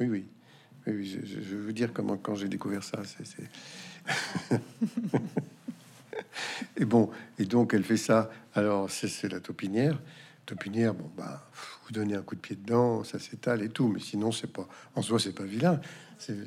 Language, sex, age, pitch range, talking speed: French, male, 60-79, 100-145 Hz, 175 wpm